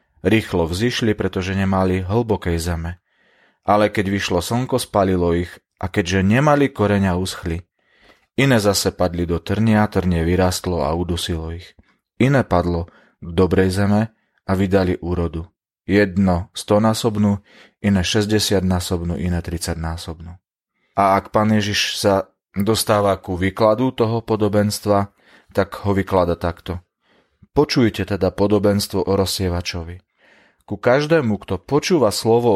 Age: 30-49